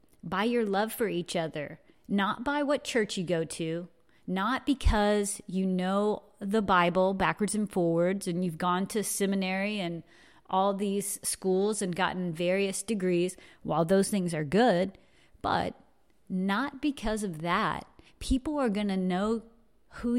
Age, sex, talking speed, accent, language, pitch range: 30-49, female, 150 wpm, American, English, 180-215 Hz